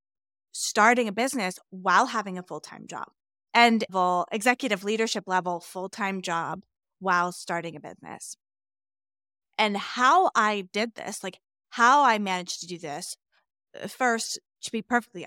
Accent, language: American, English